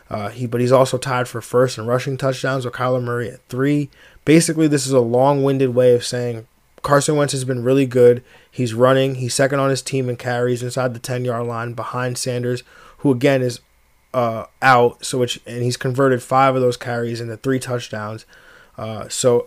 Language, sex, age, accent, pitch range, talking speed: English, male, 20-39, American, 120-135 Hz, 195 wpm